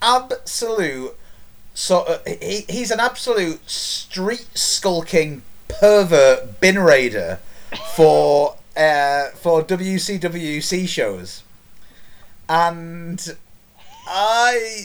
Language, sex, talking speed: English, male, 80 wpm